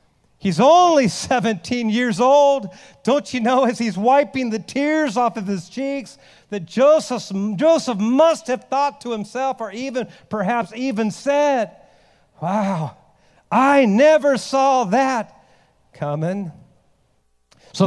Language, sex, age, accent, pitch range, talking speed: English, male, 50-69, American, 175-245 Hz, 125 wpm